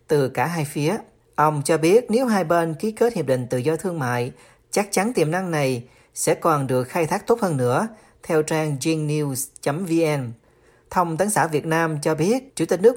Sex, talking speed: male, 210 wpm